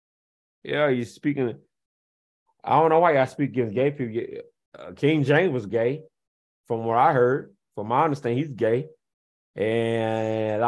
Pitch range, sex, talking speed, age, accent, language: 115-155 Hz, male, 150 wpm, 30-49, American, English